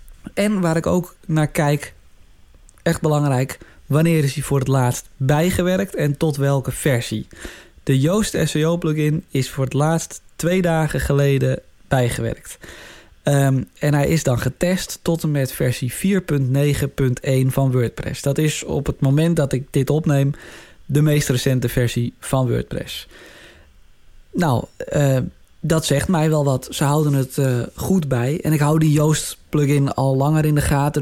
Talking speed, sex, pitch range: 160 wpm, male, 130-155 Hz